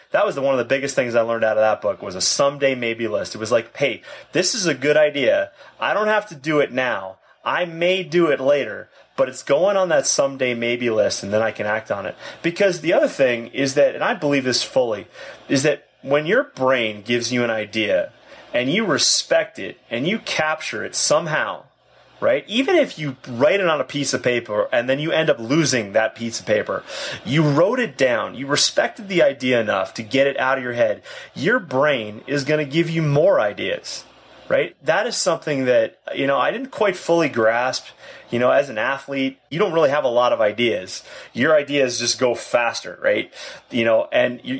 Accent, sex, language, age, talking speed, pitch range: American, male, English, 30-49, 220 wpm, 120-165 Hz